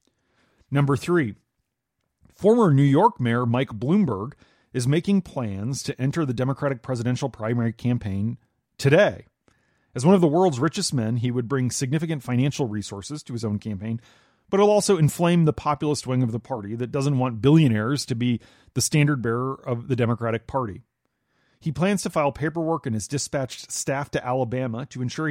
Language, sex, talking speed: English, male, 170 wpm